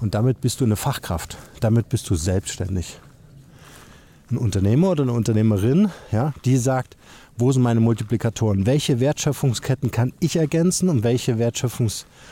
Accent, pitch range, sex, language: German, 110-145 Hz, male, German